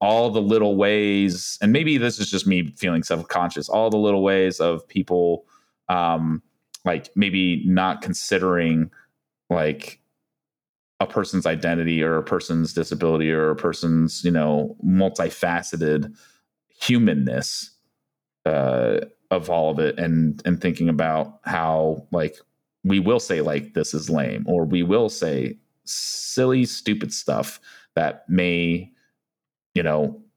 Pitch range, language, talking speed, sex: 80-95 Hz, English, 130 wpm, male